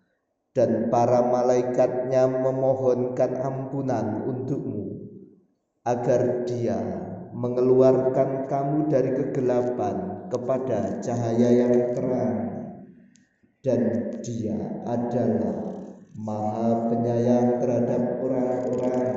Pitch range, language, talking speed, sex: 125-150 Hz, Indonesian, 70 wpm, male